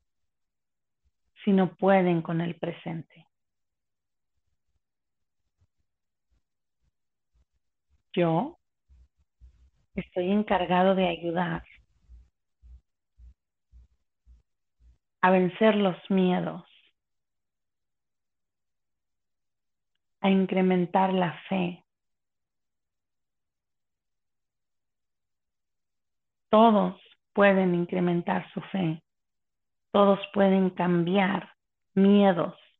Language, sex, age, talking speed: Spanish, female, 40-59, 50 wpm